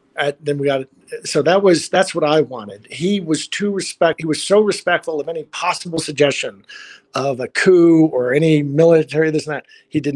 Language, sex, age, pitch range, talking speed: English, male, 50-69, 130-165 Hz, 200 wpm